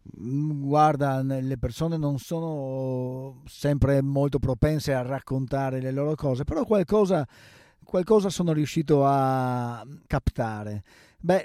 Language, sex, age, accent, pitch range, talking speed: Italian, male, 40-59, native, 120-155 Hz, 110 wpm